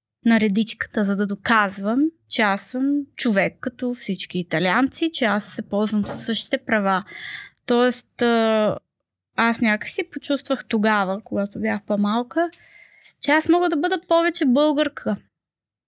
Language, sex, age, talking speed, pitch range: Bulgarian, female, 20-39, 130 wpm, 205-260 Hz